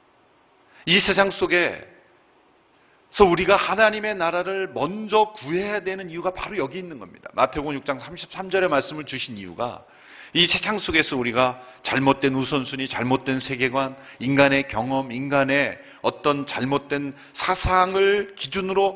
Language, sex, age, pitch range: Korean, male, 40-59, 135-205 Hz